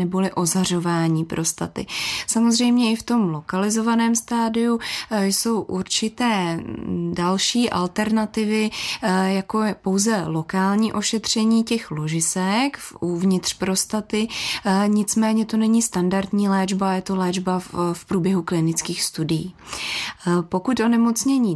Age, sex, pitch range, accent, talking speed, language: 20-39, female, 180-225 Hz, native, 95 wpm, Czech